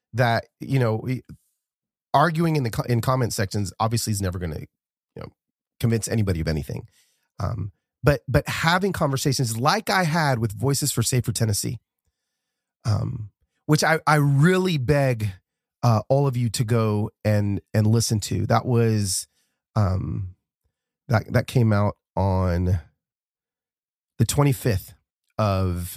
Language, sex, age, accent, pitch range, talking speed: English, male, 30-49, American, 100-135 Hz, 140 wpm